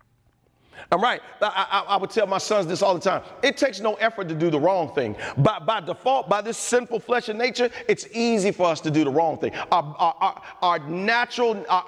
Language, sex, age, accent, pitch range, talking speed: English, male, 40-59, American, 185-240 Hz, 225 wpm